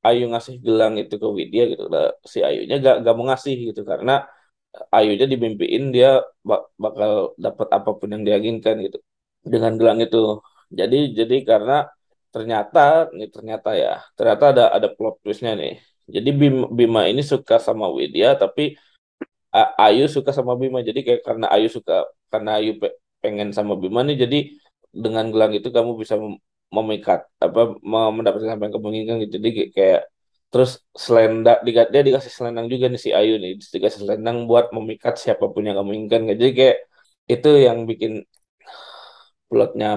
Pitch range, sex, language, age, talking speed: 110-140 Hz, male, Indonesian, 20-39, 155 wpm